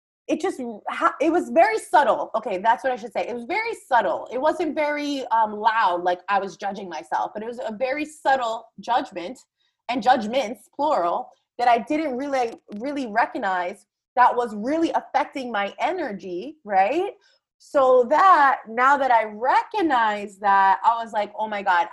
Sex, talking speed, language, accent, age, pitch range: female, 170 wpm, English, American, 20-39, 225-300 Hz